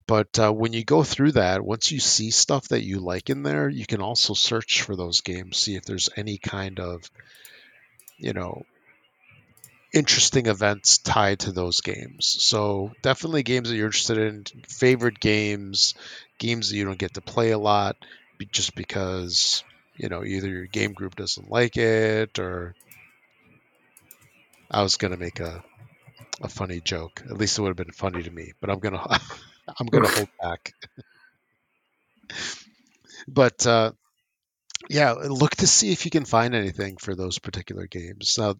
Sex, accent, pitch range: male, American, 95-115 Hz